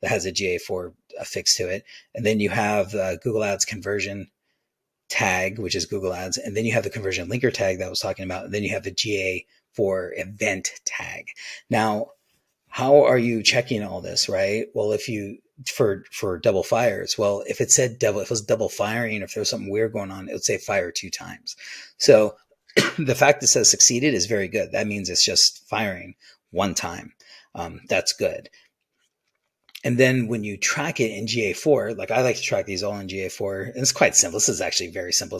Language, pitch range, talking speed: English, 95-115 Hz, 210 wpm